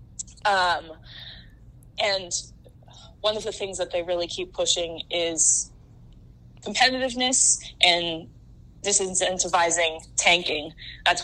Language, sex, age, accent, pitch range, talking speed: English, female, 20-39, American, 160-185 Hz, 90 wpm